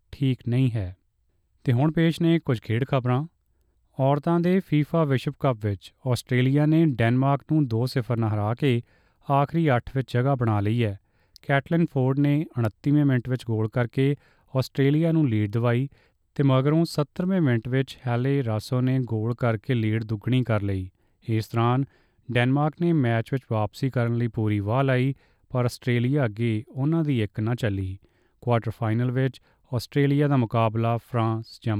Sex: male